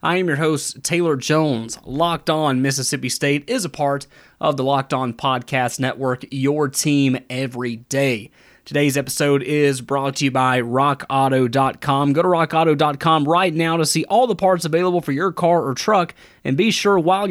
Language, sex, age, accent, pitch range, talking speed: English, male, 30-49, American, 135-165 Hz, 175 wpm